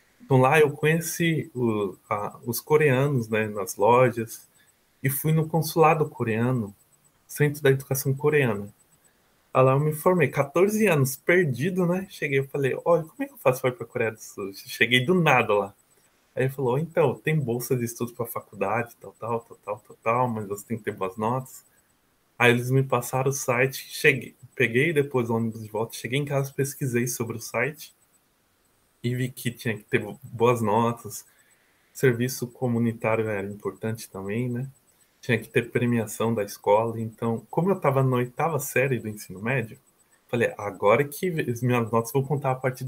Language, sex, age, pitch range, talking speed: Portuguese, male, 20-39, 115-145 Hz, 185 wpm